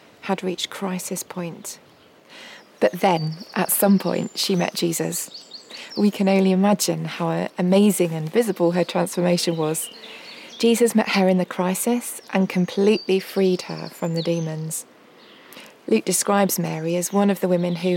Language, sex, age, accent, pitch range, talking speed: English, female, 30-49, British, 175-205 Hz, 150 wpm